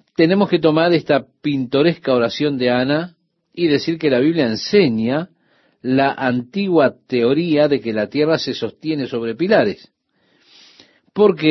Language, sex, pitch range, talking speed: Spanish, male, 120-155 Hz, 135 wpm